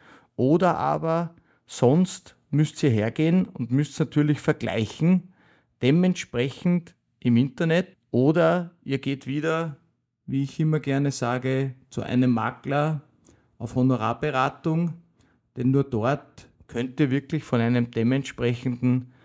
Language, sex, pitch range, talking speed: German, male, 120-155 Hz, 110 wpm